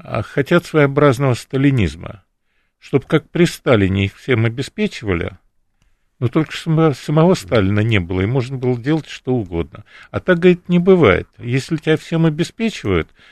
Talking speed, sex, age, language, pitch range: 140 wpm, male, 50-69, Russian, 105-155 Hz